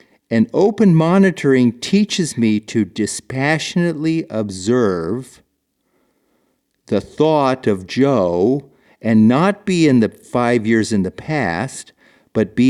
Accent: American